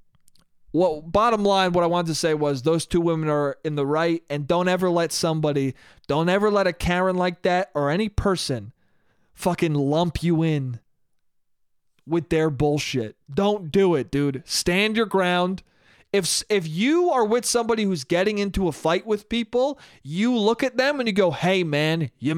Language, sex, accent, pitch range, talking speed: English, male, American, 160-215 Hz, 180 wpm